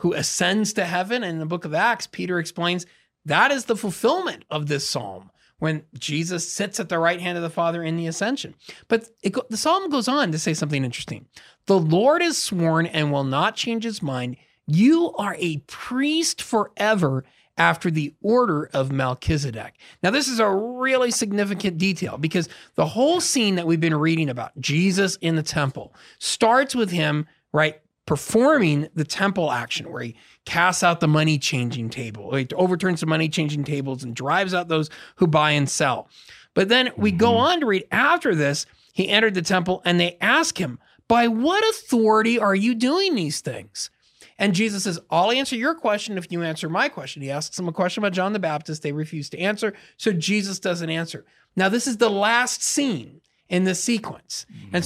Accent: American